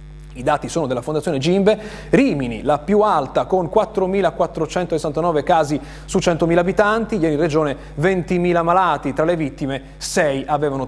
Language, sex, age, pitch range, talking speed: Italian, male, 30-49, 135-175 Hz, 145 wpm